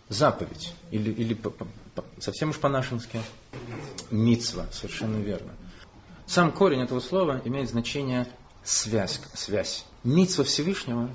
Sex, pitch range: male, 110-140 Hz